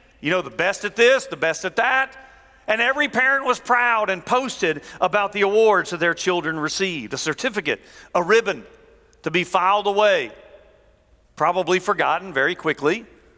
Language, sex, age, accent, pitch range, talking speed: English, male, 50-69, American, 185-245 Hz, 160 wpm